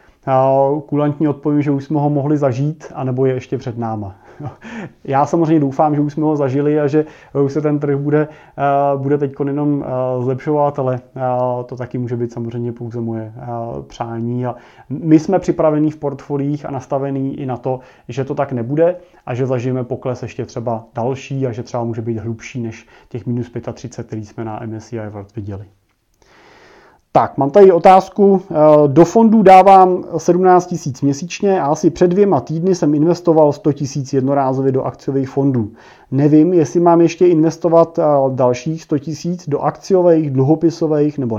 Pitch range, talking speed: 125-160 Hz, 165 wpm